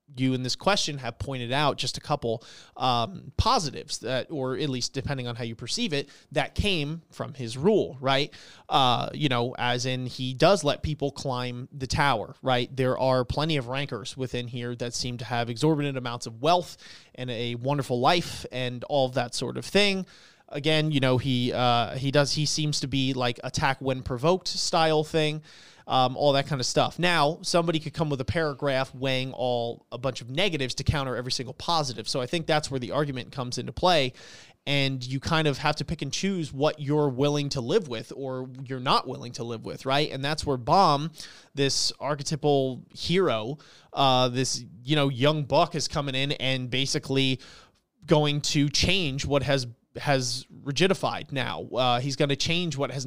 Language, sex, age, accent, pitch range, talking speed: English, male, 30-49, American, 130-150 Hz, 195 wpm